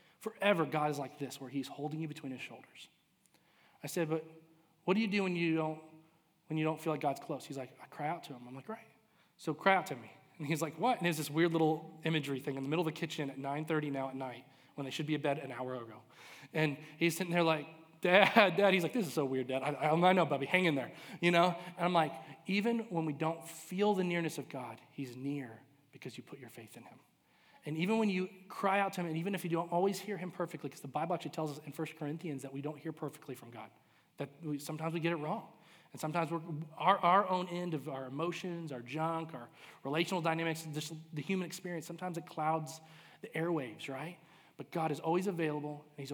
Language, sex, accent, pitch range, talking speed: English, male, American, 140-170 Hz, 250 wpm